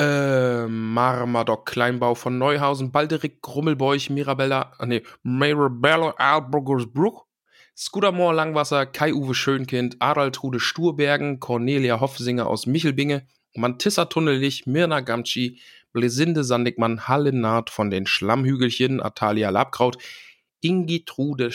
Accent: German